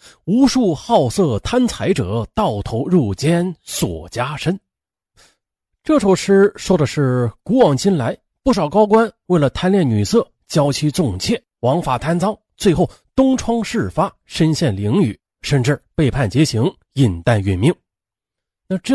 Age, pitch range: 30-49, 125-210 Hz